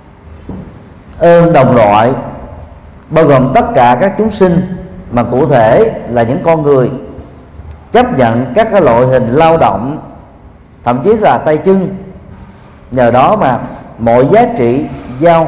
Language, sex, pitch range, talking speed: Vietnamese, male, 115-165 Hz, 140 wpm